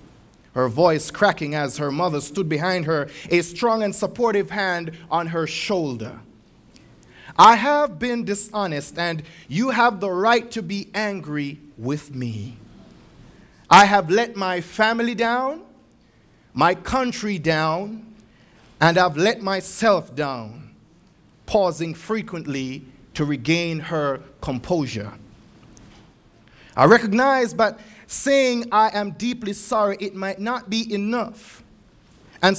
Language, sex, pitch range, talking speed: English, male, 150-220 Hz, 120 wpm